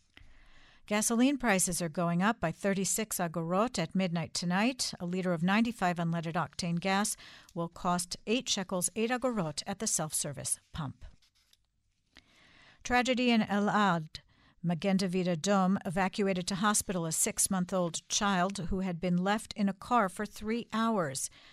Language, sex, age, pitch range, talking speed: English, female, 60-79, 170-210 Hz, 140 wpm